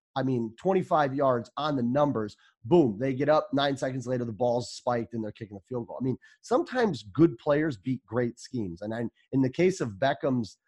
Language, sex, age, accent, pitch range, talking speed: English, male, 30-49, American, 110-135 Hz, 215 wpm